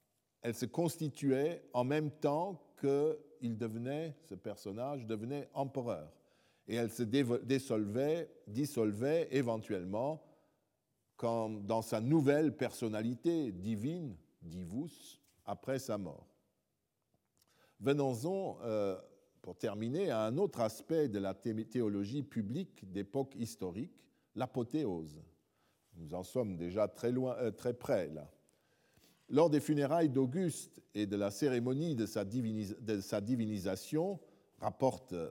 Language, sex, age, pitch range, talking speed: French, male, 50-69, 110-145 Hz, 105 wpm